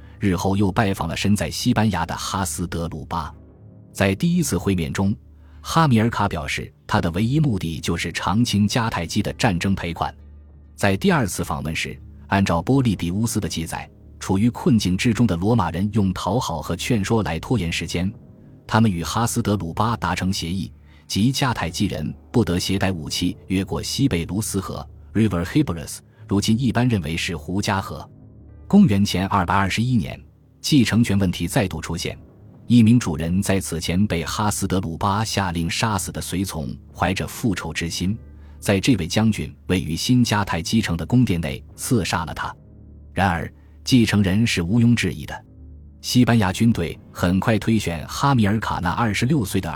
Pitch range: 85-110 Hz